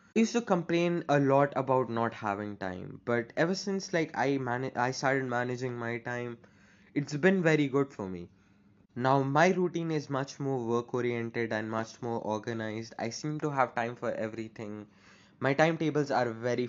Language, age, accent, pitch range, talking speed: English, 20-39, Indian, 115-150 Hz, 175 wpm